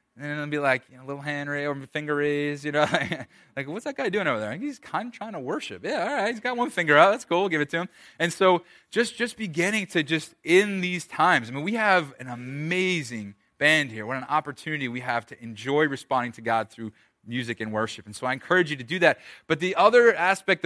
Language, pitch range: English, 120-170 Hz